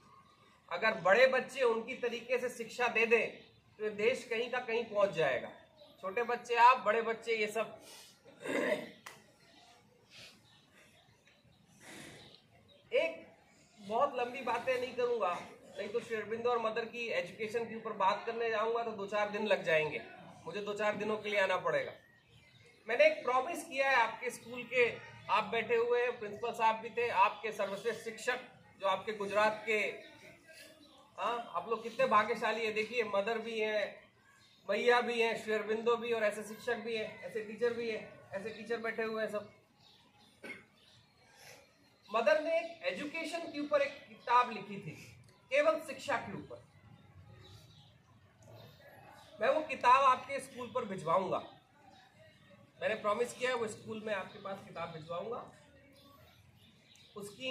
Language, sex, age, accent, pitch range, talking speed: Hindi, male, 30-49, native, 205-245 Hz, 145 wpm